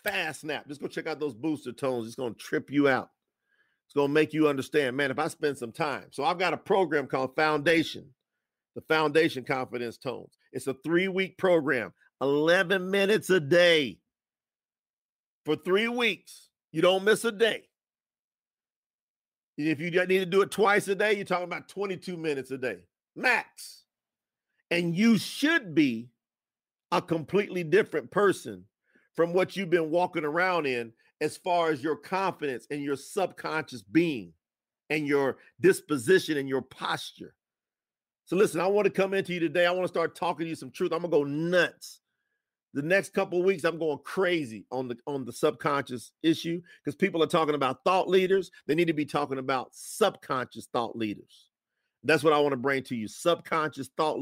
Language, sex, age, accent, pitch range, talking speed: English, male, 50-69, American, 145-185 Hz, 180 wpm